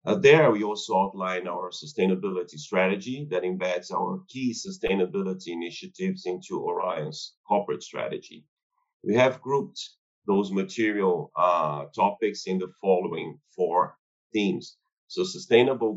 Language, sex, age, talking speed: English, male, 40-59, 120 wpm